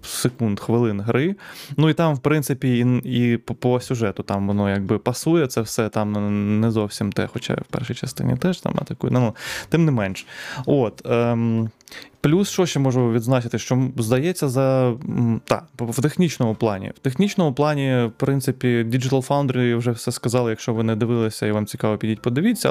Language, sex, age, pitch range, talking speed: Ukrainian, male, 20-39, 115-135 Hz, 175 wpm